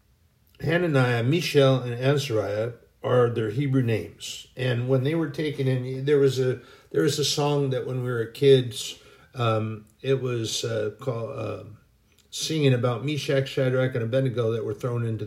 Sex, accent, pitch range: male, American, 120-145 Hz